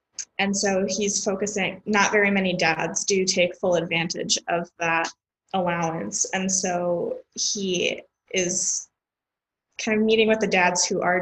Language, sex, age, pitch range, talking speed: English, female, 10-29, 180-210 Hz, 145 wpm